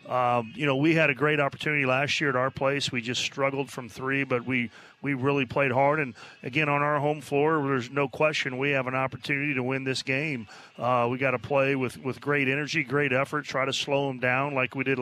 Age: 30-49